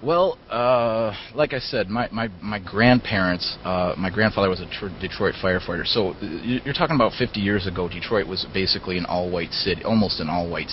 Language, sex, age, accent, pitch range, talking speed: English, male, 30-49, American, 90-100 Hz, 185 wpm